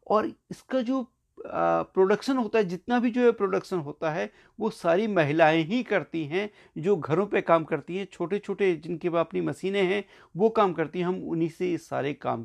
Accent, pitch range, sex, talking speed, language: native, 160-230 Hz, male, 200 wpm, Hindi